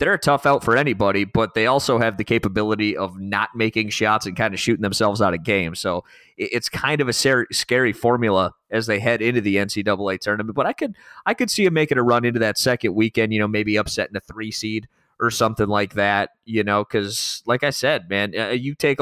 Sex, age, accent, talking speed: male, 30-49, American, 225 wpm